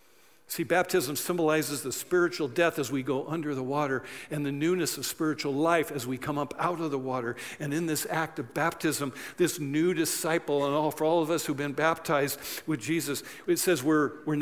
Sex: male